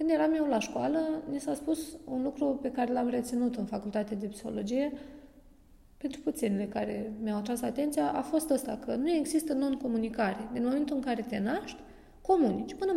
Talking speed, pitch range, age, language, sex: 180 wpm, 255-335 Hz, 20-39, Romanian, female